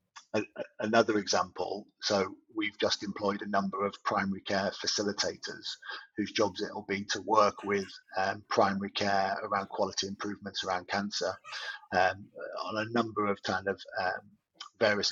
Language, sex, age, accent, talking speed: English, male, 30-49, British, 145 wpm